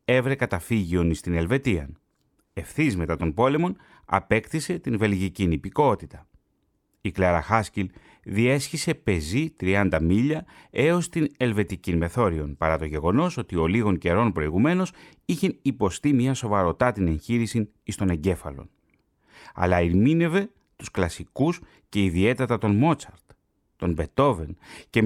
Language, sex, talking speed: Greek, male, 115 wpm